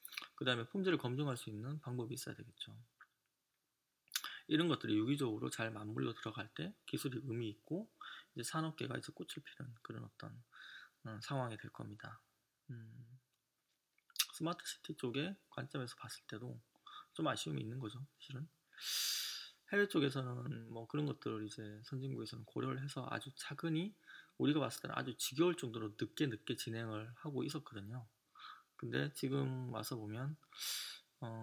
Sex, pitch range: male, 110-150 Hz